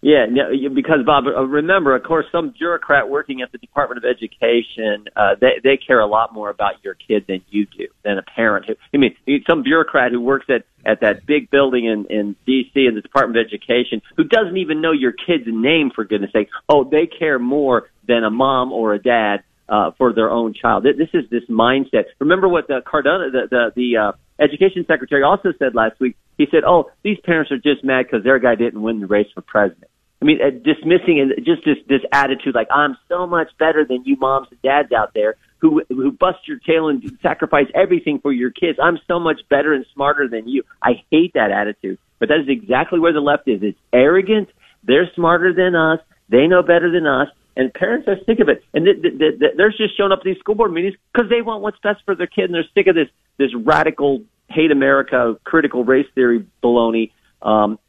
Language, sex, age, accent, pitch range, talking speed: English, male, 40-59, American, 120-175 Hz, 220 wpm